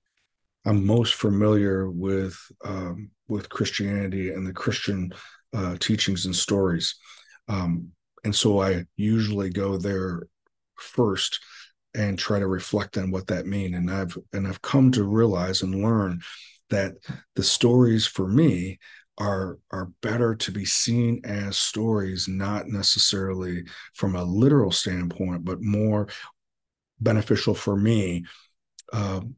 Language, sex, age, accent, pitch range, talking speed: English, male, 40-59, American, 95-110 Hz, 135 wpm